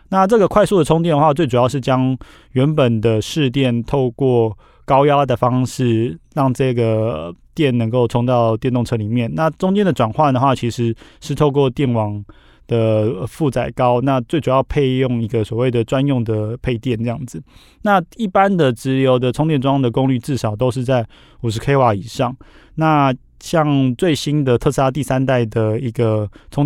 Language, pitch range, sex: Chinese, 115-140 Hz, male